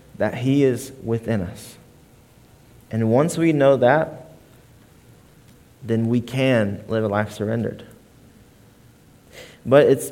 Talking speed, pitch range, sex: 115 wpm, 130-160 Hz, male